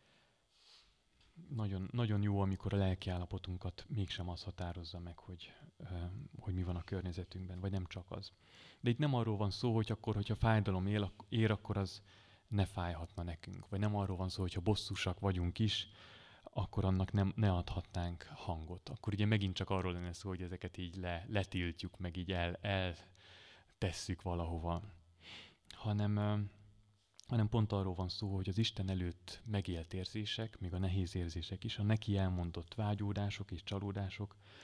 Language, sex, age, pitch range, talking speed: Hungarian, male, 30-49, 90-105 Hz, 160 wpm